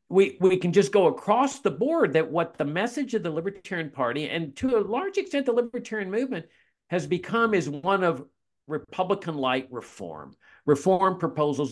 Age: 50-69